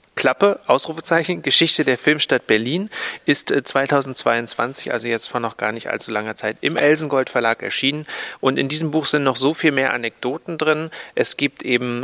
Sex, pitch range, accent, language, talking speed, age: male, 120-145 Hz, German, German, 175 wpm, 30-49